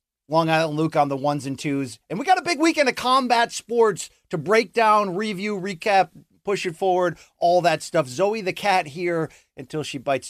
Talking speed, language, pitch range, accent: 205 wpm, English, 135-200 Hz, American